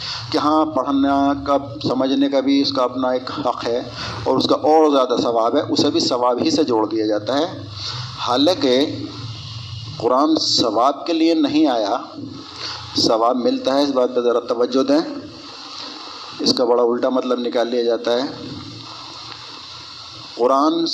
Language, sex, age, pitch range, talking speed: Urdu, male, 50-69, 125-160 Hz, 160 wpm